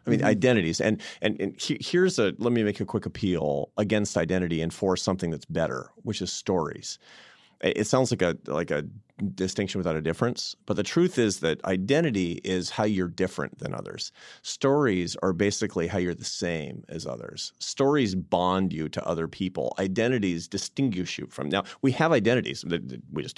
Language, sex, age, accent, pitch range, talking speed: English, male, 40-59, American, 90-125 Hz, 180 wpm